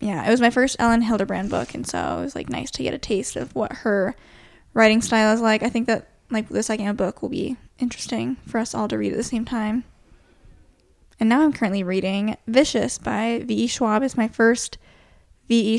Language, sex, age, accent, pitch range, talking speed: English, female, 10-29, American, 200-240 Hz, 220 wpm